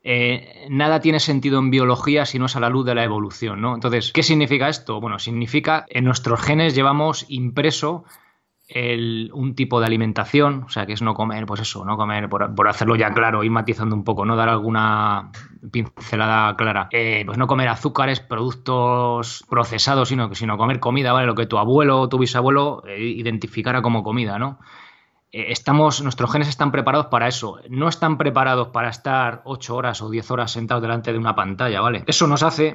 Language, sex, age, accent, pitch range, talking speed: Spanish, male, 20-39, Spanish, 115-135 Hz, 200 wpm